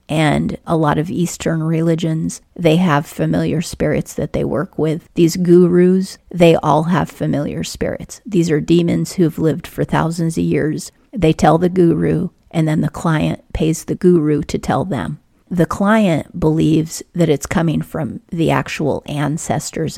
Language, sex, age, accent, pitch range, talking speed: English, female, 40-59, American, 155-180 Hz, 165 wpm